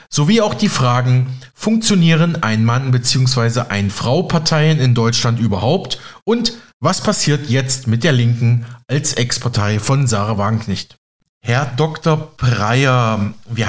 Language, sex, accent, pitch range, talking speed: German, male, German, 125-155 Hz, 120 wpm